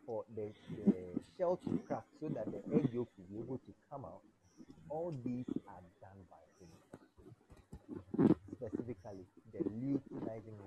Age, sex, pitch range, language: 30-49, male, 110-155 Hz, Japanese